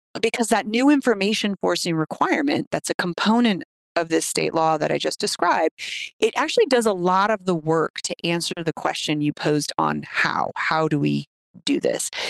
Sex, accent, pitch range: female, American, 170-235 Hz